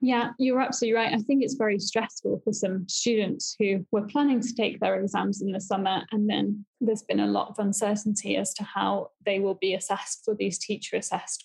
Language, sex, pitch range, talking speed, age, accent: English, female, 205-240 Hz, 215 wpm, 10-29, British